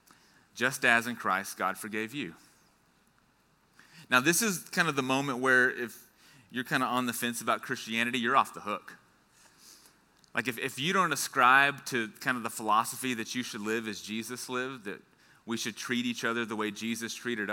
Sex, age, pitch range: male, 30-49, 105-125 Hz